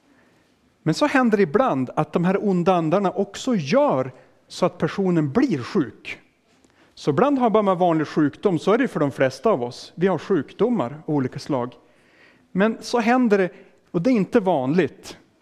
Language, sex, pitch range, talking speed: Swedish, male, 150-195 Hz, 170 wpm